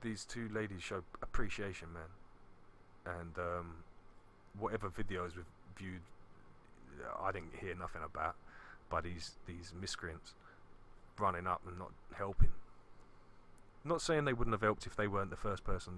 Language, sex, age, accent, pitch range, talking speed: English, male, 30-49, British, 90-105 Hz, 145 wpm